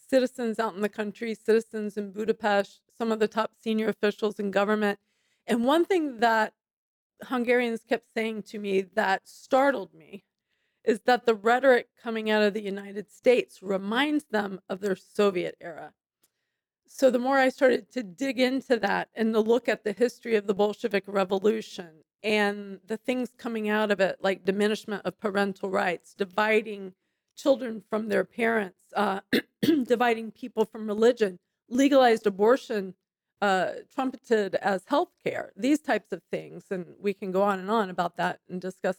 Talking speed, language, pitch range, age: 165 wpm, English, 200-240 Hz, 40-59